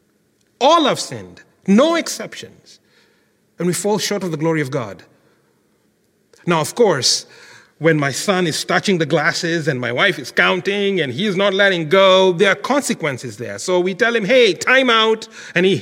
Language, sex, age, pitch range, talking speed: English, male, 40-59, 150-205 Hz, 180 wpm